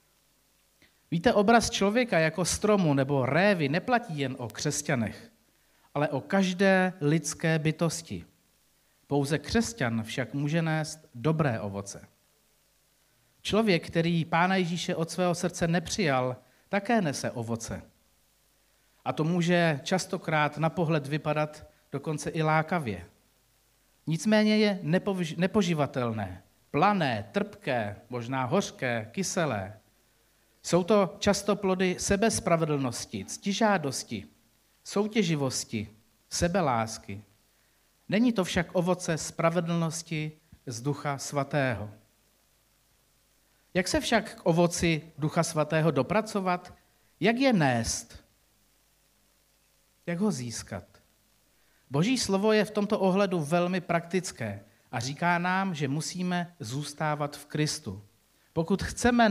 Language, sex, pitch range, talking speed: Czech, male, 125-185 Hz, 100 wpm